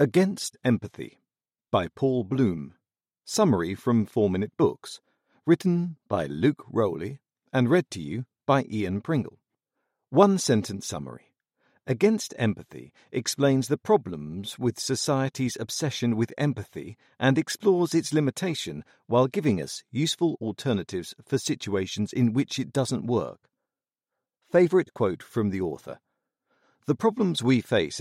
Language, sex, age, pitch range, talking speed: English, male, 50-69, 105-145 Hz, 120 wpm